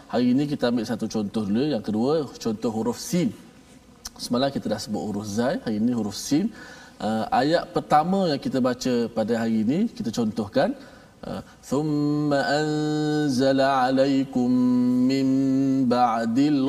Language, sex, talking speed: Malayalam, male, 145 wpm